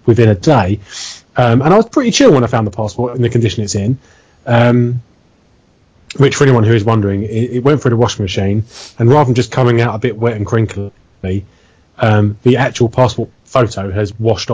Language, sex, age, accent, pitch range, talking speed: English, male, 30-49, British, 105-125 Hz, 210 wpm